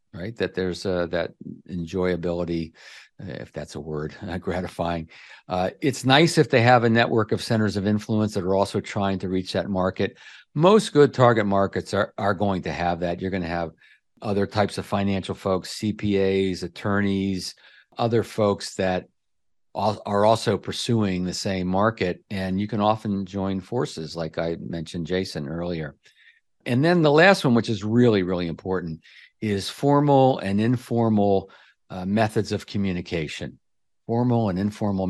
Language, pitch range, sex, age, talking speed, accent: English, 90-115 Hz, male, 50-69, 160 wpm, American